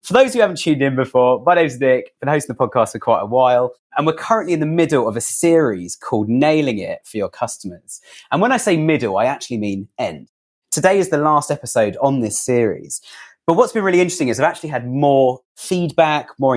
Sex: male